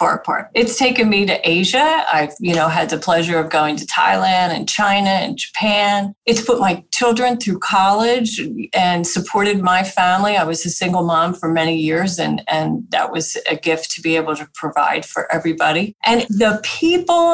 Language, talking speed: English, 190 wpm